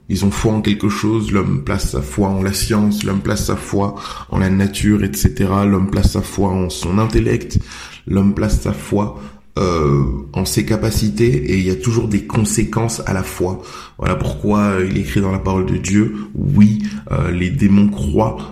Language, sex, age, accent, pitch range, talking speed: French, male, 20-39, French, 90-105 Hz, 200 wpm